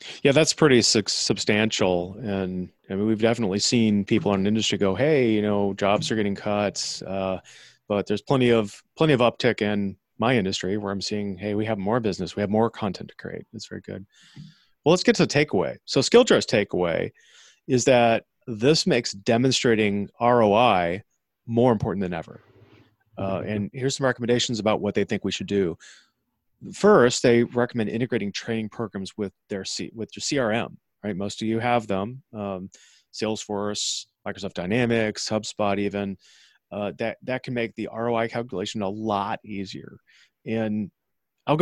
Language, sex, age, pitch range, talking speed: English, male, 30-49, 100-115 Hz, 170 wpm